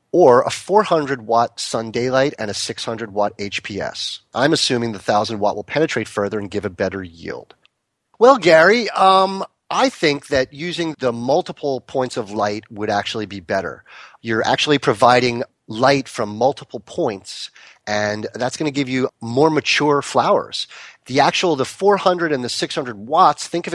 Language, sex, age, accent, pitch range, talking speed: English, male, 30-49, American, 105-145 Hz, 160 wpm